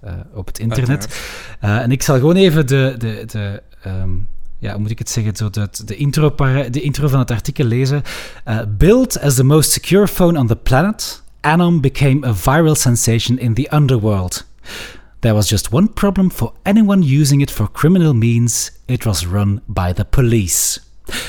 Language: Dutch